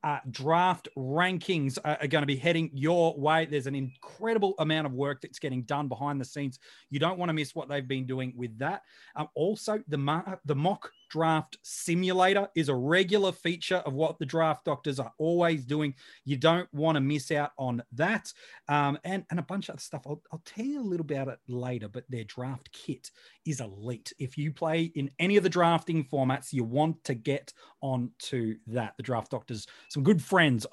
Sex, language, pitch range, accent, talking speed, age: male, English, 140-185 Hz, Australian, 210 wpm, 30-49